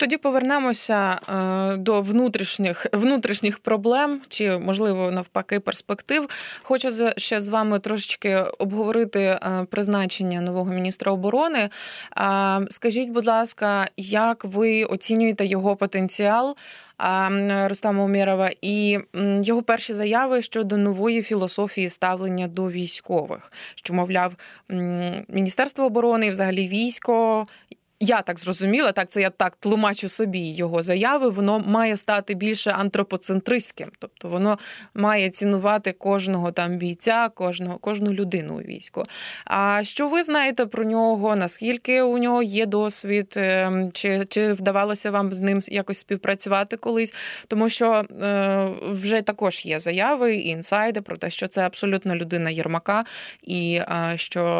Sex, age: female, 20-39